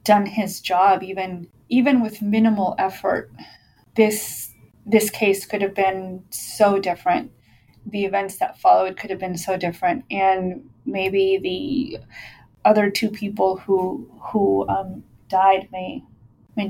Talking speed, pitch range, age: 135 wpm, 185-210 Hz, 20-39